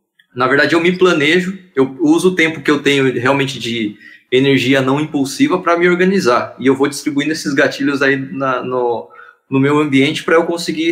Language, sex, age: Portuguese, male, 20-39